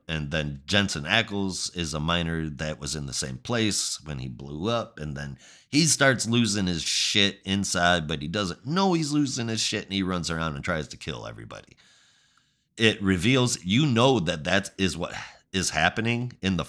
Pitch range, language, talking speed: 80-115 Hz, English, 195 wpm